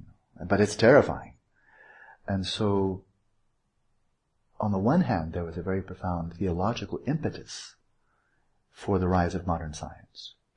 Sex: male